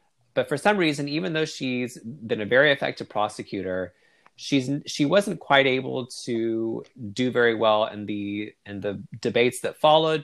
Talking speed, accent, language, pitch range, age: 165 wpm, American, English, 105-130 Hz, 30-49